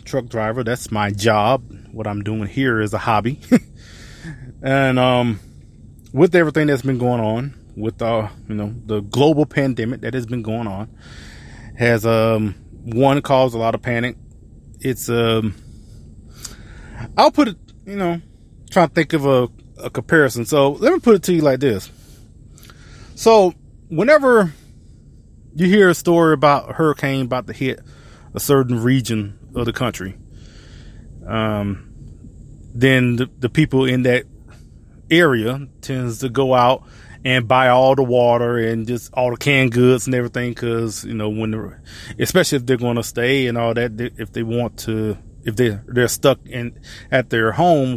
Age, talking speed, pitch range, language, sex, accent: 20-39, 170 wpm, 110-130 Hz, English, male, American